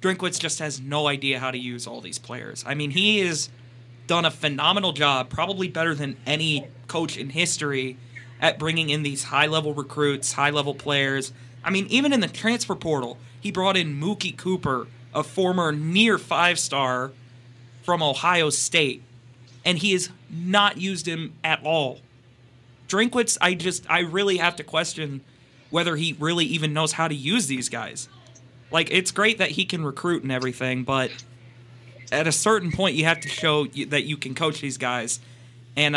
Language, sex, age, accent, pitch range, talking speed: English, male, 30-49, American, 125-165 Hz, 180 wpm